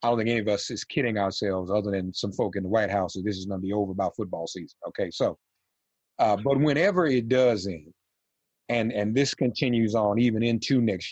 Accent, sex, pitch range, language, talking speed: American, male, 105-135 Hz, English, 230 wpm